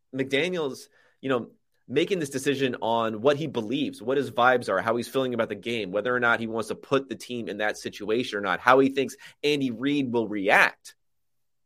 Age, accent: 30-49, American